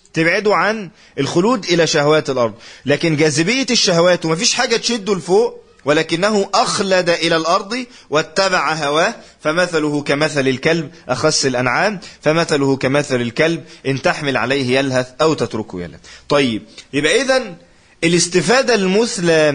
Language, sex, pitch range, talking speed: Arabic, male, 150-210 Hz, 120 wpm